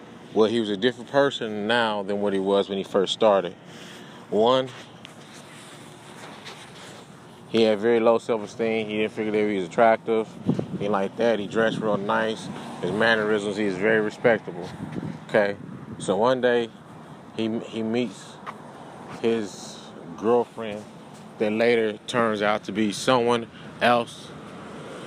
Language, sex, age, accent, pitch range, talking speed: English, male, 30-49, American, 105-115 Hz, 140 wpm